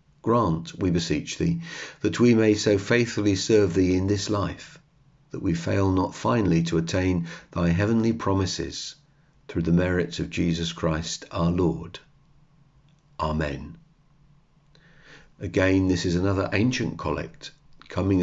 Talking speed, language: 130 wpm, English